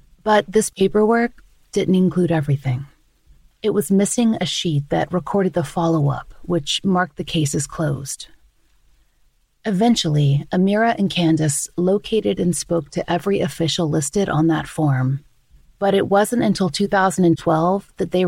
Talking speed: 135 wpm